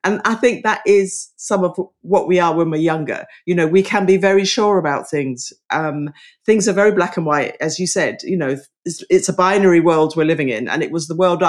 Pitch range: 155-200 Hz